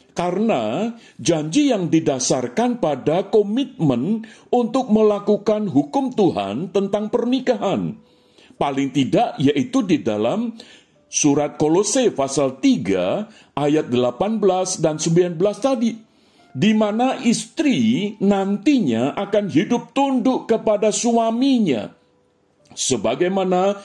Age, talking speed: 50-69, 90 wpm